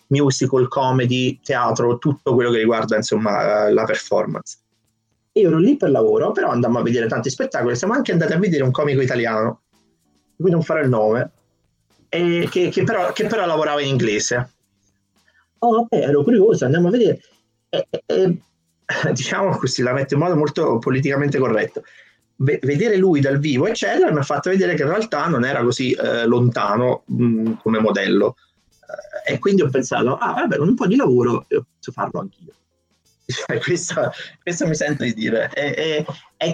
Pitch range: 110-155 Hz